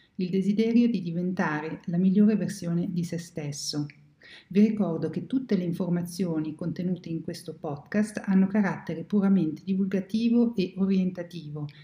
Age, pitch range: 50-69, 165-205 Hz